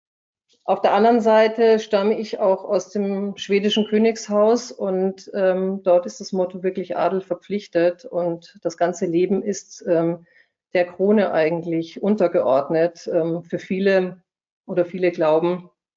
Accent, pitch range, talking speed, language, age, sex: German, 165-190 Hz, 135 wpm, German, 50-69, female